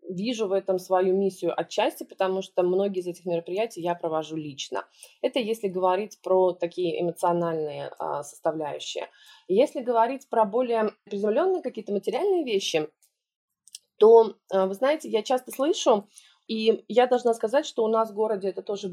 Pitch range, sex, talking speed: 185-250 Hz, female, 155 wpm